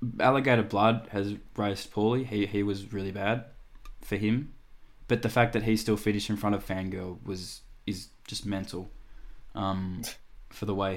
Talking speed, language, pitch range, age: 170 wpm, English, 95-110 Hz, 10-29